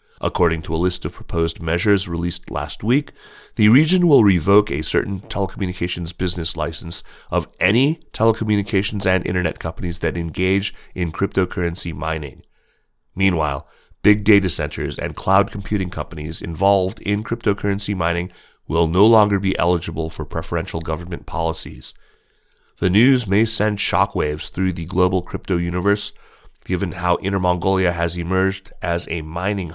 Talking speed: 140 wpm